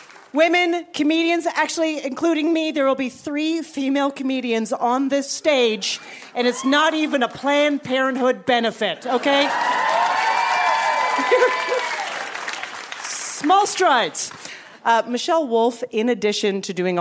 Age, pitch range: 40-59, 205-275 Hz